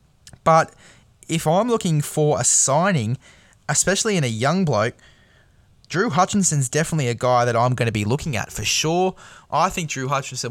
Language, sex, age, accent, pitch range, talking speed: English, male, 10-29, Australian, 115-145 Hz, 170 wpm